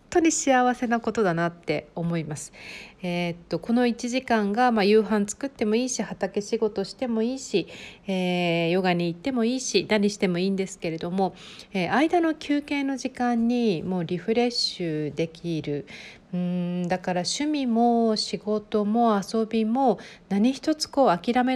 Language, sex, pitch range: Japanese, female, 175-230 Hz